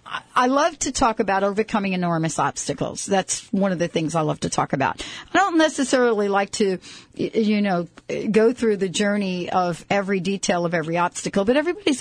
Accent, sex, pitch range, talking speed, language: American, female, 190-235 Hz, 185 wpm, English